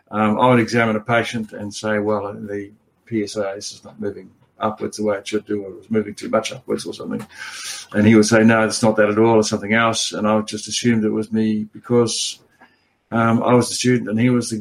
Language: English